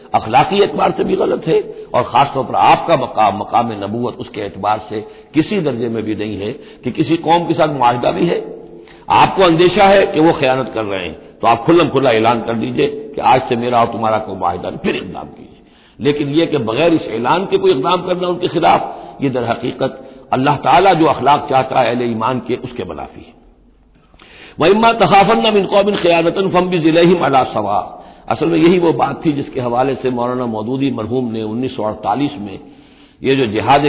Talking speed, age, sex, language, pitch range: 195 wpm, 60-79, male, Hindi, 115-165 Hz